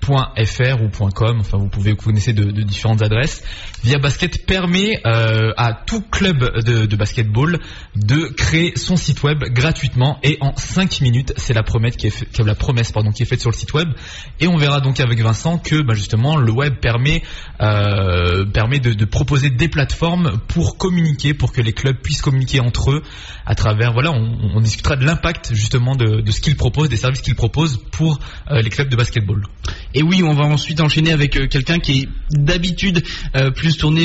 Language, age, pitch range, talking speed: French, 20-39, 115-150 Hz, 205 wpm